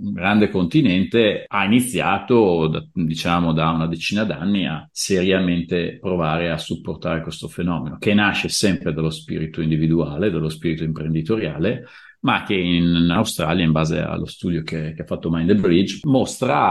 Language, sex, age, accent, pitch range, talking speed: Italian, male, 40-59, native, 80-90 Hz, 145 wpm